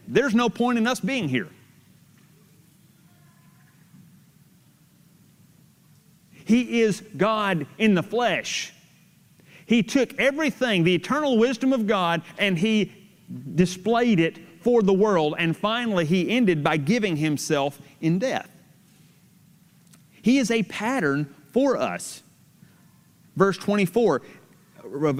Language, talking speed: English, 110 wpm